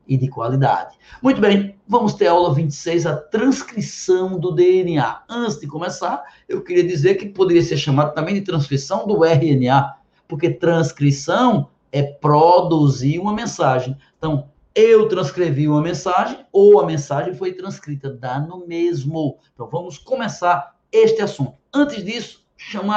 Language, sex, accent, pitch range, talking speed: Portuguese, male, Brazilian, 145-190 Hz, 145 wpm